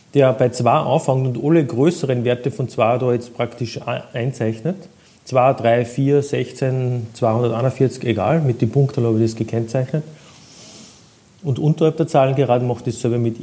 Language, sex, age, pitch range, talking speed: German, male, 40-59, 115-150 Hz, 165 wpm